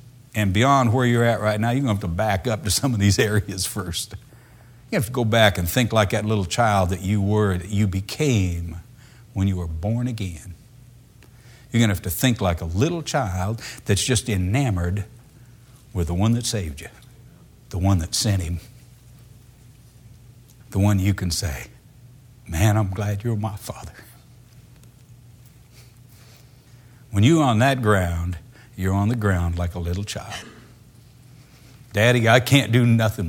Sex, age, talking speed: male, 60-79, 170 wpm